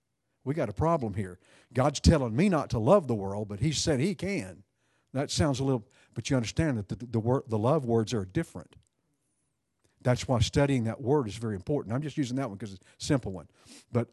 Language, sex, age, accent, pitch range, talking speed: English, male, 50-69, American, 115-140 Hz, 230 wpm